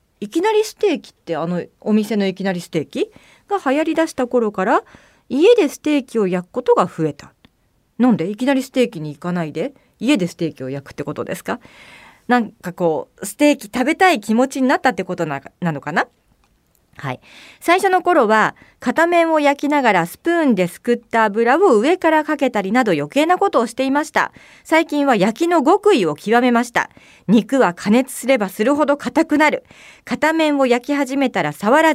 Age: 40-59